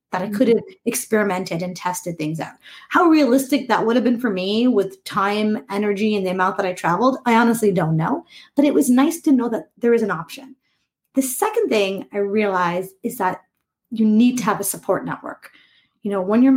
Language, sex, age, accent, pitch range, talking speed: English, female, 30-49, American, 195-255 Hz, 215 wpm